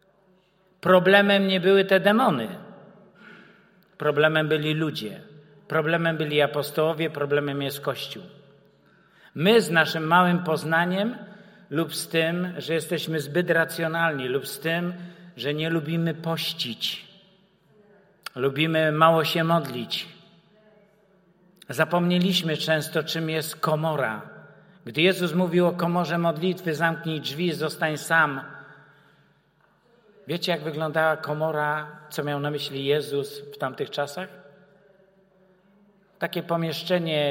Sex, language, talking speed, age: male, Czech, 105 wpm, 50-69